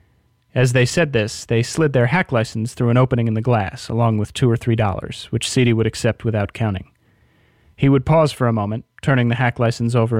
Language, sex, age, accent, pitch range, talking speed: English, male, 30-49, American, 110-125 Hz, 225 wpm